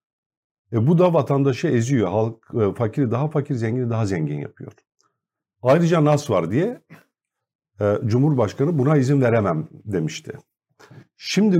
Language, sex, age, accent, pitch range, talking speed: Turkish, male, 50-69, native, 115-160 Hz, 130 wpm